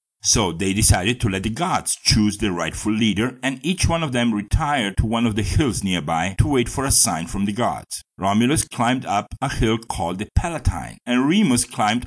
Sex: male